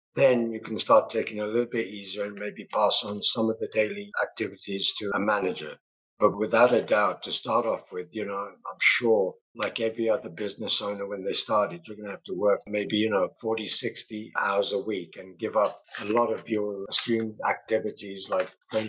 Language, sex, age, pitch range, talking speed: English, male, 60-79, 105-120 Hz, 210 wpm